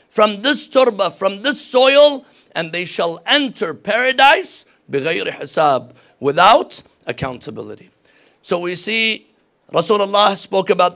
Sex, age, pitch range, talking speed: male, 50-69, 170-230 Hz, 105 wpm